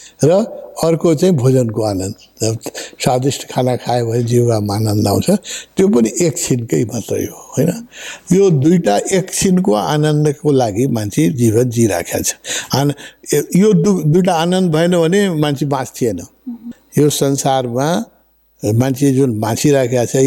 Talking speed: 80 wpm